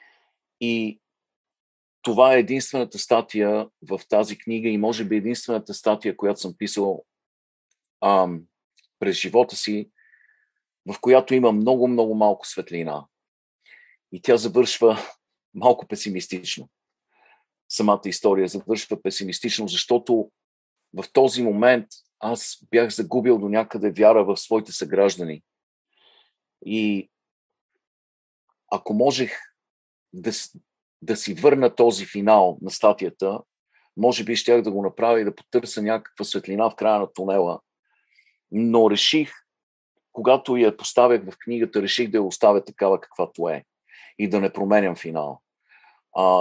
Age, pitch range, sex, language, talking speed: 50-69, 100-120 Hz, male, Bulgarian, 120 wpm